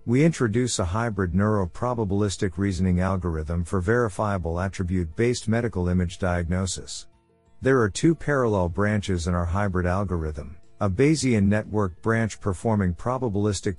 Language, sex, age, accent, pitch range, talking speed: English, male, 50-69, American, 90-115 Hz, 120 wpm